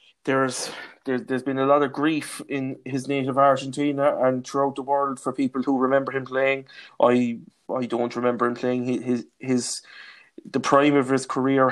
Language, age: English, 20-39